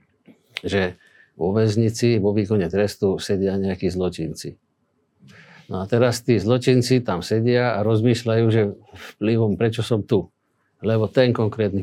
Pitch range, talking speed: 100-115 Hz, 130 wpm